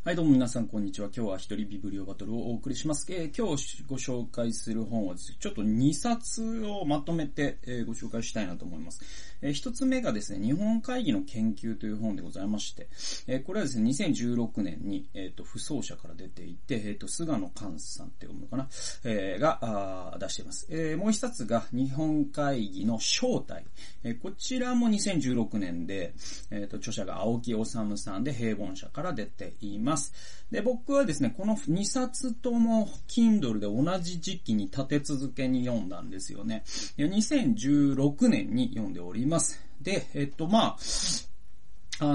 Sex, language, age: male, Japanese, 30-49